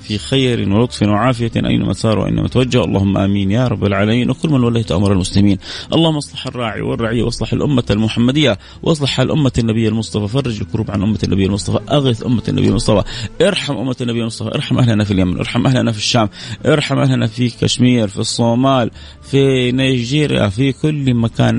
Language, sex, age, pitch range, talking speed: English, male, 30-49, 95-120 Hz, 170 wpm